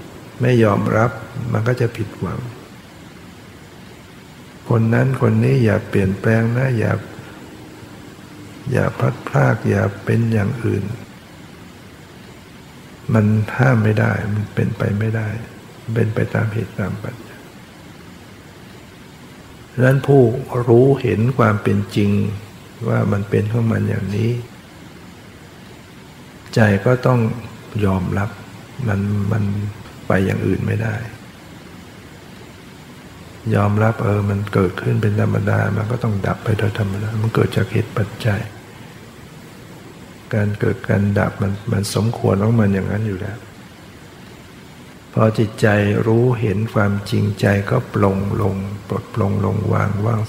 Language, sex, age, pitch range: Thai, male, 60-79, 100-115 Hz